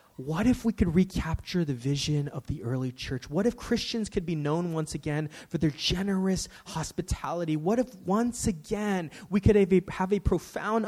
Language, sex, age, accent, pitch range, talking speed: English, male, 20-39, American, 120-175 Hz, 180 wpm